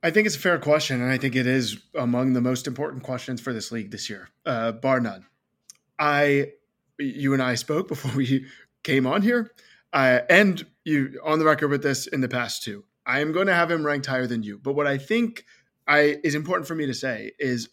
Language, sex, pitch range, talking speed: English, male, 125-155 Hz, 225 wpm